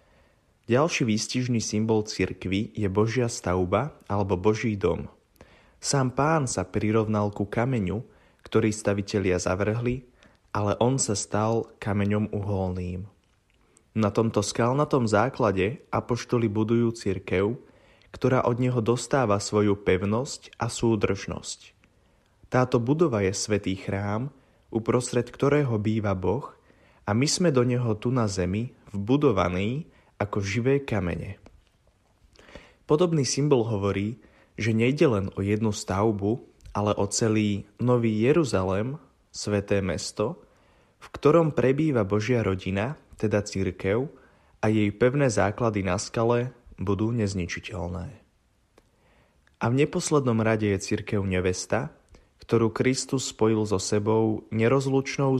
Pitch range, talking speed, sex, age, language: 100-125 Hz, 115 wpm, male, 20-39, Slovak